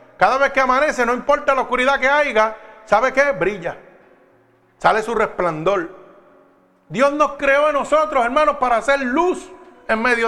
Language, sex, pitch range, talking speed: Spanish, male, 220-280 Hz, 160 wpm